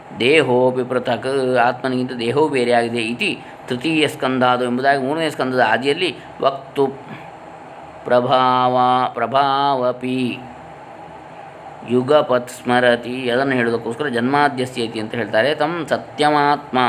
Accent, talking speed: native, 90 wpm